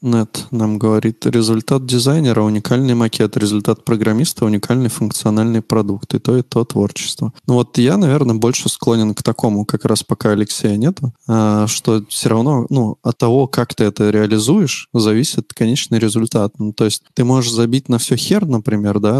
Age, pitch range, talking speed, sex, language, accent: 20-39, 105-125 Hz, 170 wpm, male, Russian, native